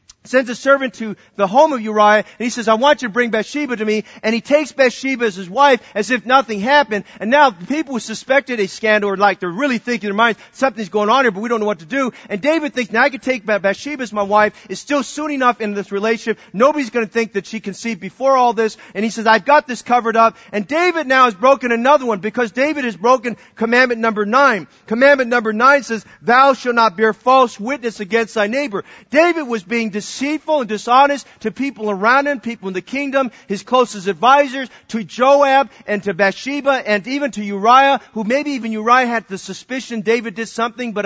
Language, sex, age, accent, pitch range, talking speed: English, male, 40-59, American, 200-260 Hz, 225 wpm